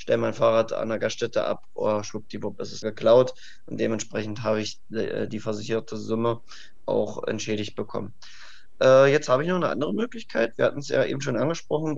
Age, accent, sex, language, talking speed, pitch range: 20-39, German, male, German, 200 wpm, 115-130 Hz